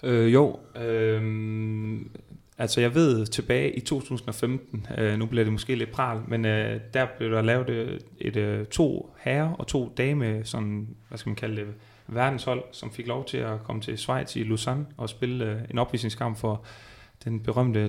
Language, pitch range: Danish, 110-125 Hz